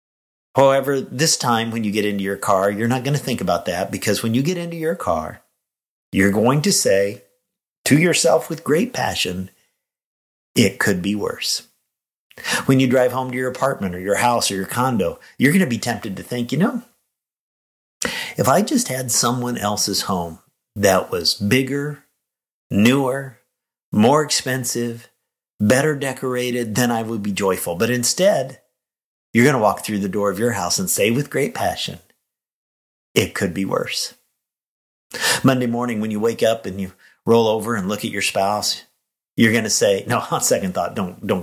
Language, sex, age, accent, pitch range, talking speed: English, male, 50-69, American, 100-130 Hz, 180 wpm